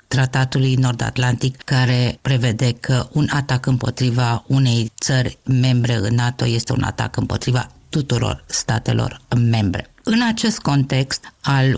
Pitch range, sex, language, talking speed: 130-165 Hz, female, Romanian, 120 wpm